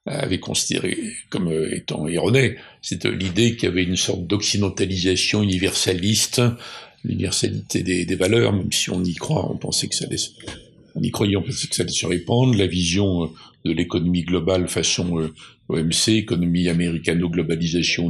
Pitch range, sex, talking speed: 85-110 Hz, male, 160 wpm